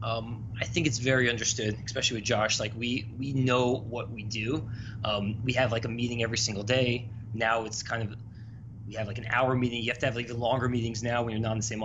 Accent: American